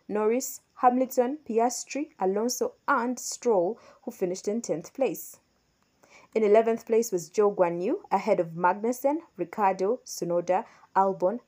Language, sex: English, female